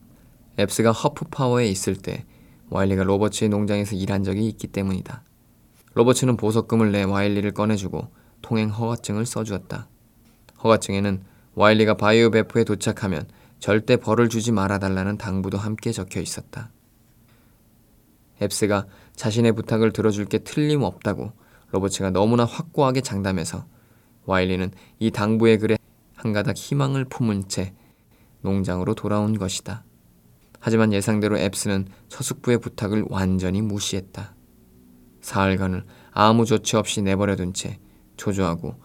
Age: 20-39